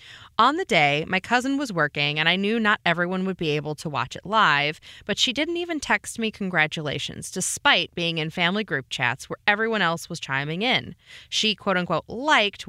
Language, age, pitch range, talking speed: English, 20-39, 150-205 Hz, 195 wpm